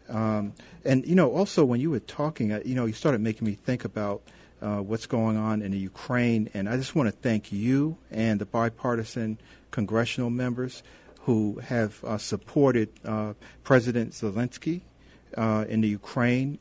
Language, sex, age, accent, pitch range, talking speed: English, male, 50-69, American, 110-125 Hz, 170 wpm